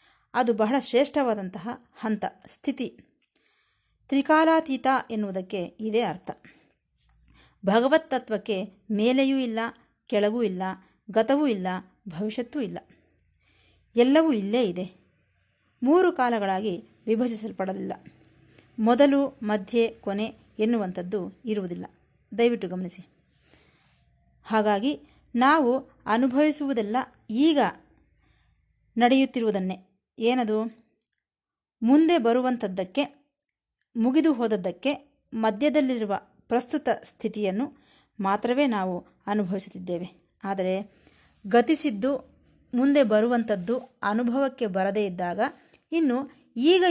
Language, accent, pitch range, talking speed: Kannada, native, 195-270 Hz, 70 wpm